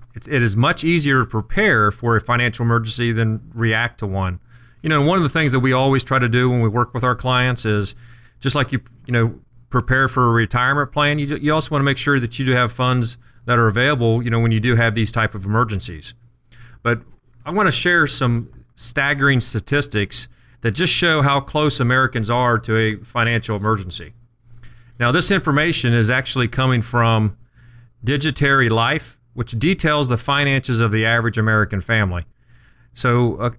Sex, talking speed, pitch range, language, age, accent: male, 190 wpm, 115-135 Hz, English, 40-59, American